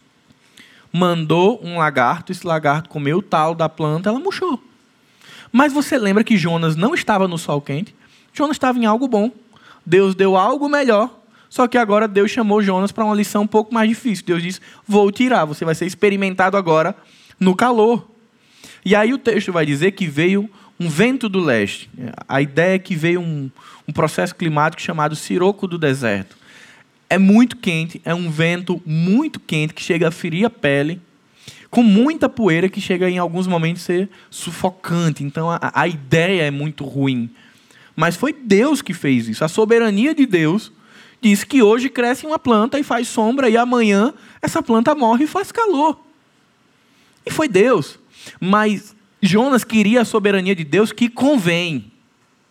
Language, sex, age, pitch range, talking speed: Portuguese, male, 20-39, 165-230 Hz, 170 wpm